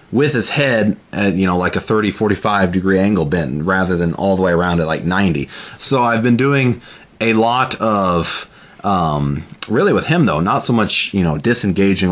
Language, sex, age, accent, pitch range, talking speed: English, male, 30-49, American, 95-120 Hz, 200 wpm